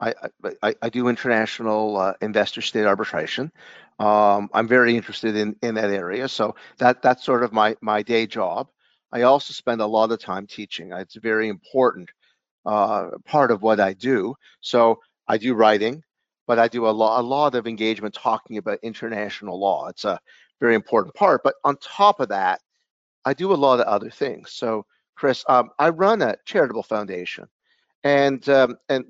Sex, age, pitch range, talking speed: male, 50-69, 110-145 Hz, 180 wpm